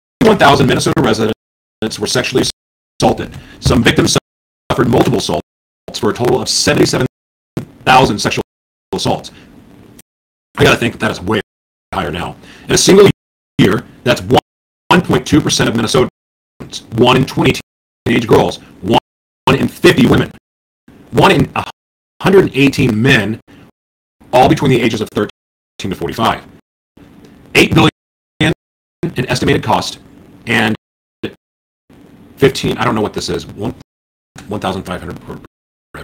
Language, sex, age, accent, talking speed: English, male, 40-59, American, 125 wpm